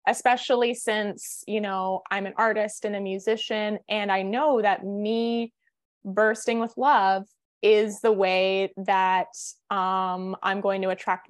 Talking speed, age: 145 wpm, 20-39